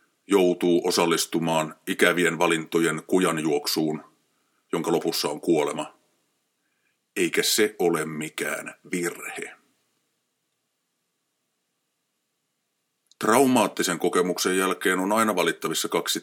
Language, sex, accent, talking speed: Finnish, male, native, 80 wpm